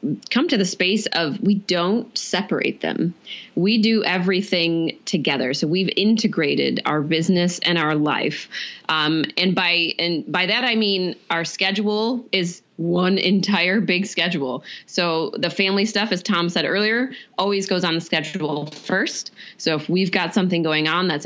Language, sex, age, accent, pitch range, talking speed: English, female, 20-39, American, 170-205 Hz, 165 wpm